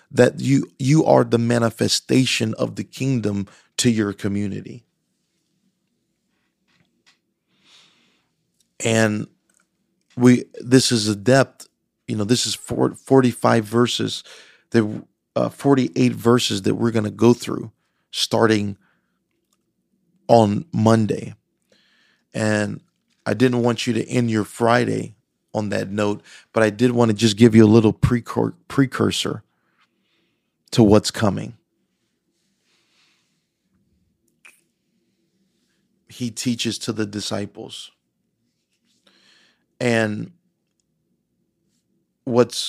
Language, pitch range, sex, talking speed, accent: English, 110-125 Hz, male, 100 wpm, American